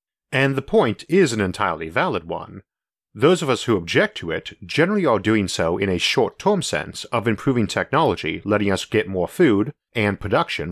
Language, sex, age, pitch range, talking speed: English, male, 40-59, 95-135 Hz, 185 wpm